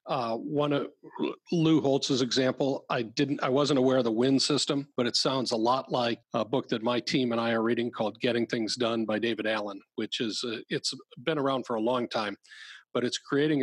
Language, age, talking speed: English, 40-59, 220 wpm